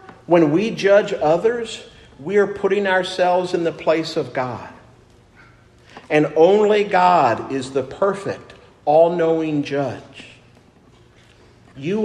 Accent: American